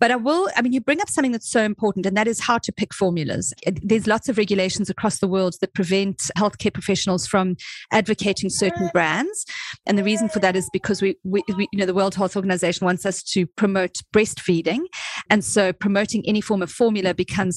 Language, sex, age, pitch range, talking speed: English, female, 40-59, 185-230 Hz, 215 wpm